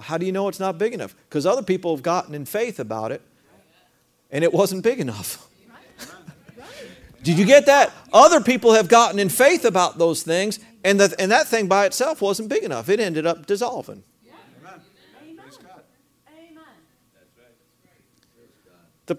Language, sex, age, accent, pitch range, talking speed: English, male, 50-69, American, 155-245 Hz, 155 wpm